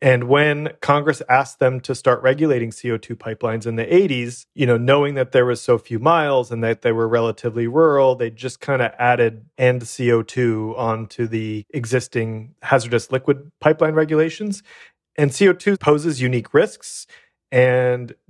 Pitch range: 115-135 Hz